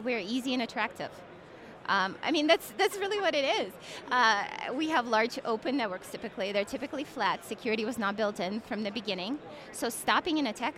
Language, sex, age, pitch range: English, female, 20-39, 200-260 Hz